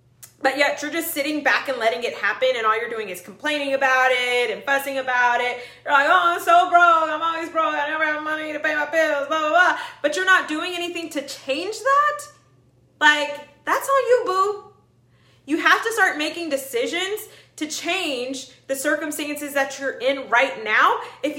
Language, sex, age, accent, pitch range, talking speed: English, female, 20-39, American, 255-340 Hz, 200 wpm